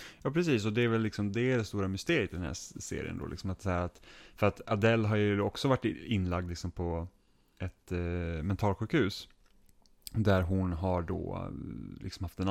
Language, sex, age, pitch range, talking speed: Swedish, male, 30-49, 90-110 Hz, 190 wpm